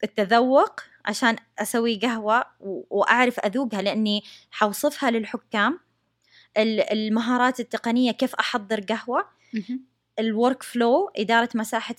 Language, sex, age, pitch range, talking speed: English, female, 20-39, 215-250 Hz, 90 wpm